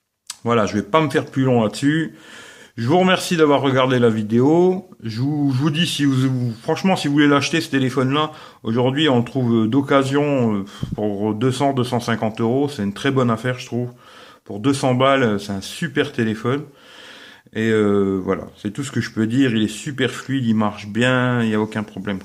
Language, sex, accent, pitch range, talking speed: English, male, French, 110-140 Hz, 205 wpm